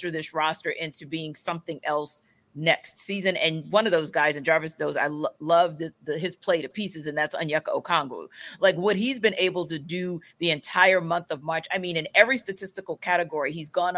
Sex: female